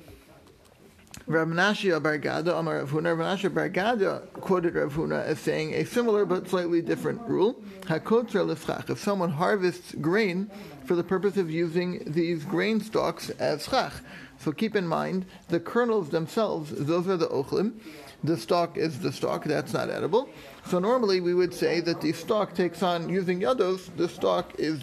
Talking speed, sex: 150 wpm, male